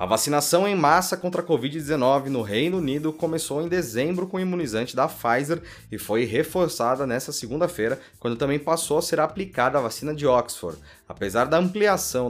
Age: 20-39